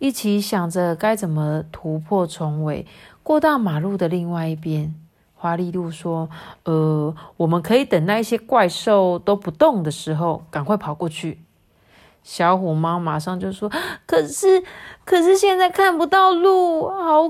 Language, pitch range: Chinese, 175-270 Hz